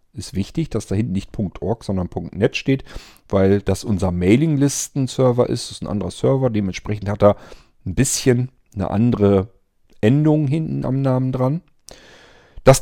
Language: German